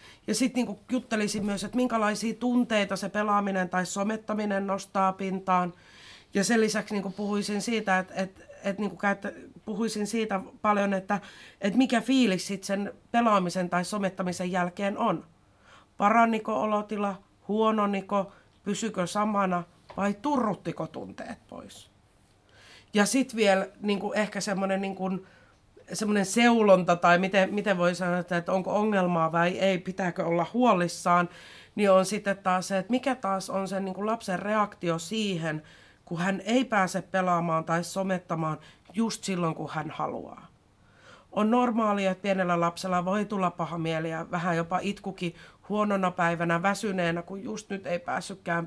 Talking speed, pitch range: 140 wpm, 175-210 Hz